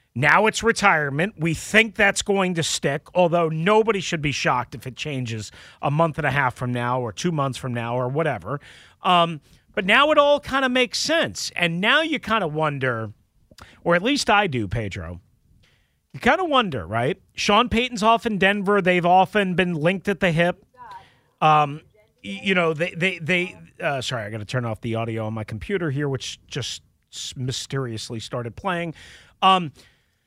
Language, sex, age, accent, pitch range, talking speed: English, male, 40-59, American, 130-215 Hz, 185 wpm